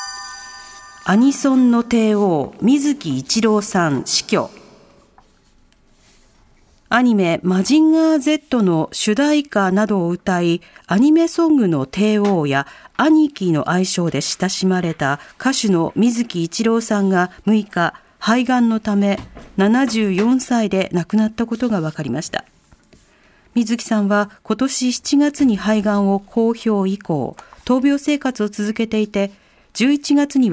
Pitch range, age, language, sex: 185-260 Hz, 40-59, Japanese, female